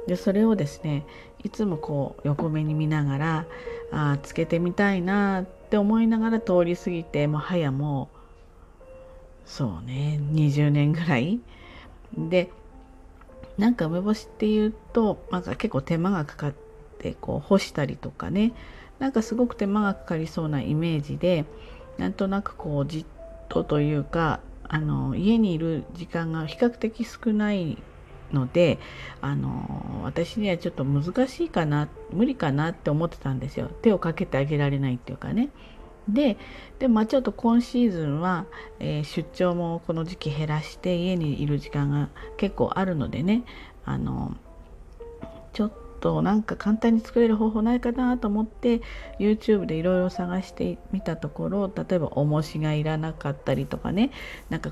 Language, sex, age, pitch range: Japanese, female, 40-59, 145-210 Hz